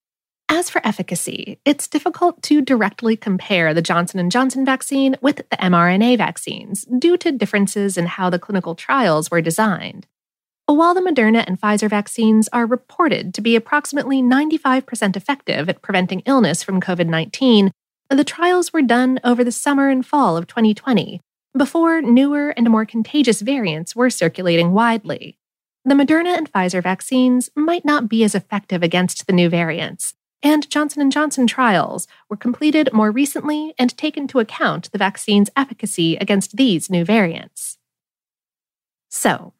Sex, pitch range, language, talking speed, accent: female, 185-275 Hz, English, 150 wpm, American